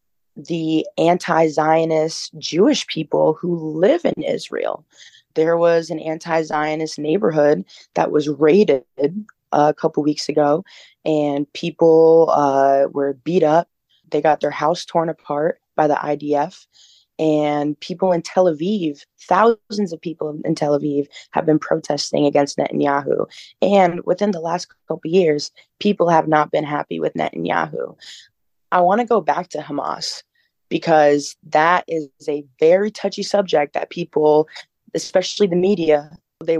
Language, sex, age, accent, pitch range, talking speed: English, female, 20-39, American, 150-170 Hz, 140 wpm